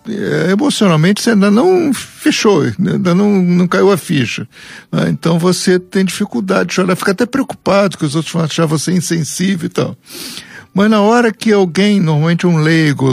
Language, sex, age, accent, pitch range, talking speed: Portuguese, male, 60-79, Brazilian, 155-200 Hz, 175 wpm